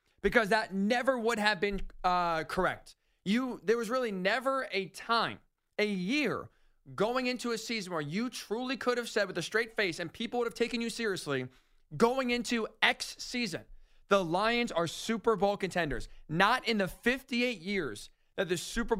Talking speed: 175 wpm